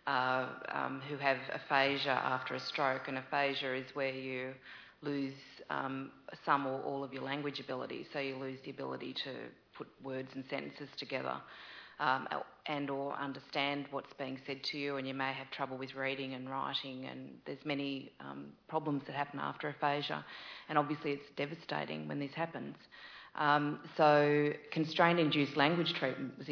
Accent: Australian